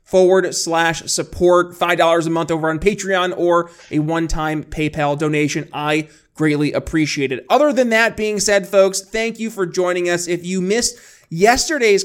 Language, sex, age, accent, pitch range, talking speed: English, male, 30-49, American, 175-210 Hz, 165 wpm